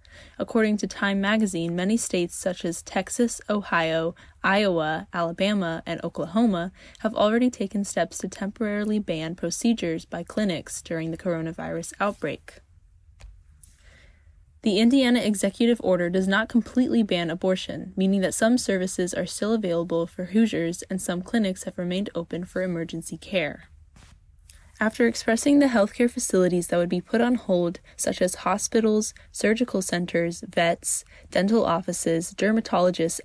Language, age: English, 10-29